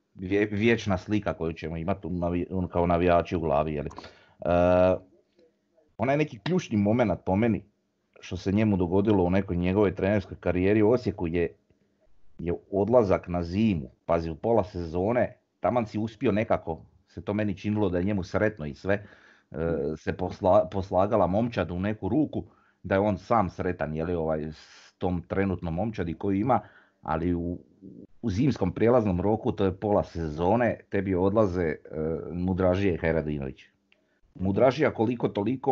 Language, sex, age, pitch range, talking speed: Croatian, male, 30-49, 85-105 Hz, 150 wpm